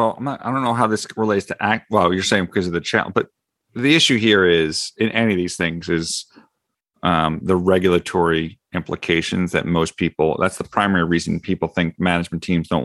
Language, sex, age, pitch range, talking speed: English, male, 40-59, 85-100 Hz, 200 wpm